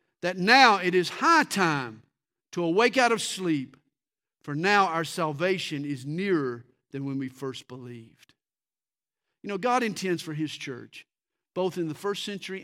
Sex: male